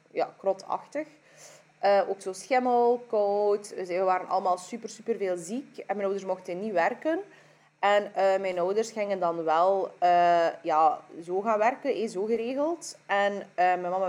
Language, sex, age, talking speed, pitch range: Dutch, female, 20-39, 175 wpm, 175-225 Hz